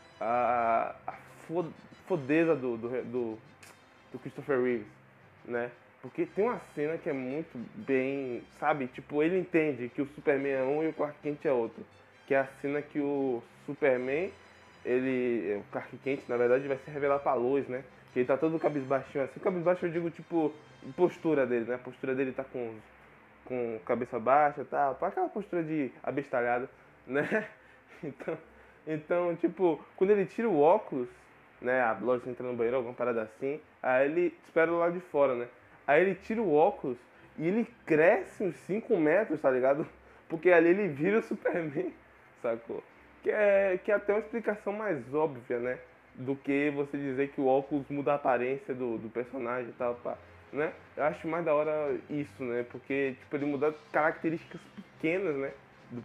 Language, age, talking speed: Portuguese, 20-39, 175 wpm